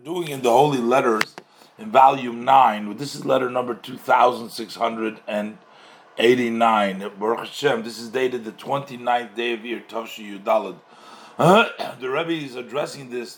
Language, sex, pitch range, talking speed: English, male, 110-145 Hz, 135 wpm